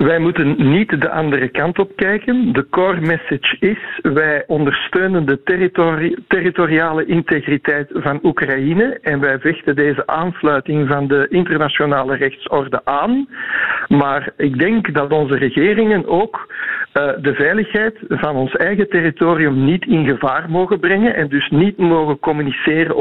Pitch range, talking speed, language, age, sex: 145-195 Hz, 140 wpm, Dutch, 60-79, male